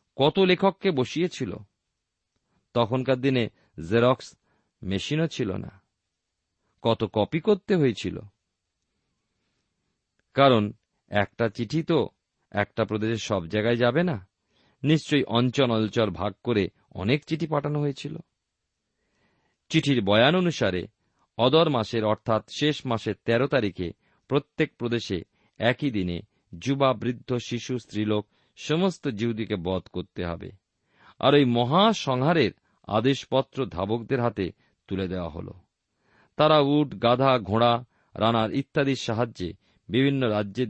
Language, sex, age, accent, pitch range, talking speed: Bengali, male, 50-69, native, 100-135 Hz, 105 wpm